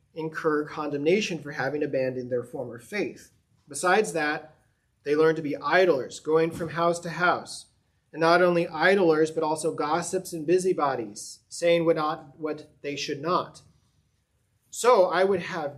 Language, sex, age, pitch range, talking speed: English, male, 30-49, 140-170 Hz, 150 wpm